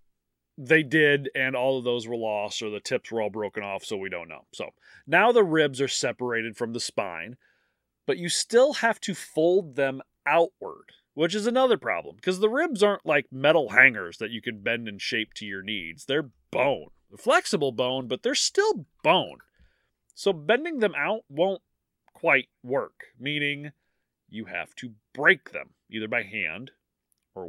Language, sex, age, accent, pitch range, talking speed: English, male, 30-49, American, 115-170 Hz, 175 wpm